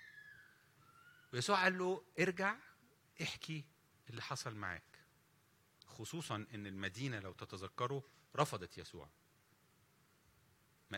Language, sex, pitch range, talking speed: English, male, 120-180 Hz, 85 wpm